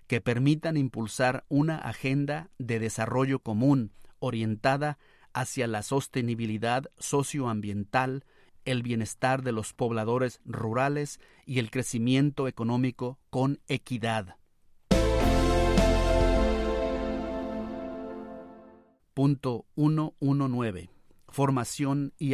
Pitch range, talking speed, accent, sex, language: 115-140 Hz, 80 wpm, Mexican, male, Spanish